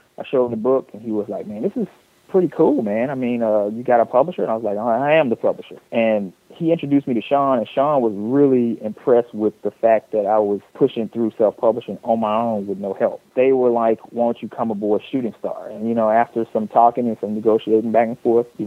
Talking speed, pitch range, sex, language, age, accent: 250 wpm, 105-120 Hz, male, English, 30-49, American